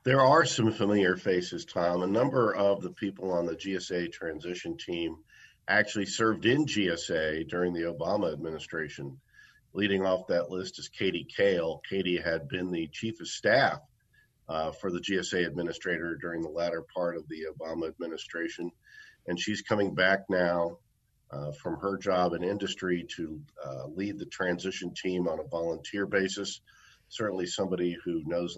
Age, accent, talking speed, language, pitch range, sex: 50-69, American, 160 wpm, English, 85-100 Hz, male